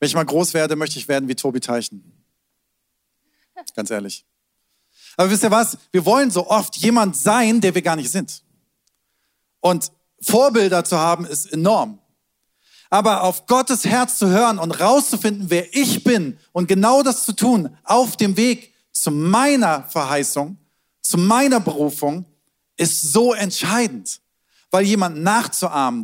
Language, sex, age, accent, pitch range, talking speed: German, male, 40-59, German, 165-225 Hz, 150 wpm